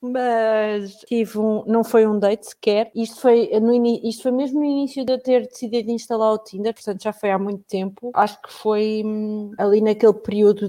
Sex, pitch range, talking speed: female, 195-230 Hz, 200 wpm